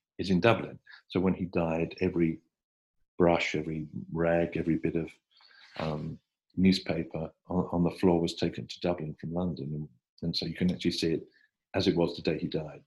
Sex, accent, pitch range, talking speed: male, British, 75-90 Hz, 190 wpm